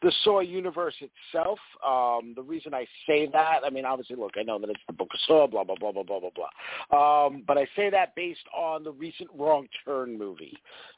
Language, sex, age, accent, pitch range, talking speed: English, male, 50-69, American, 135-220 Hz, 225 wpm